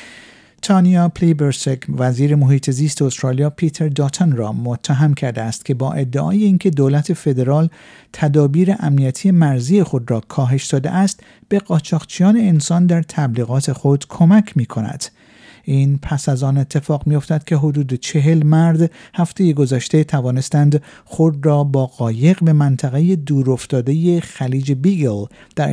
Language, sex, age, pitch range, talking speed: Persian, male, 50-69, 135-165 Hz, 140 wpm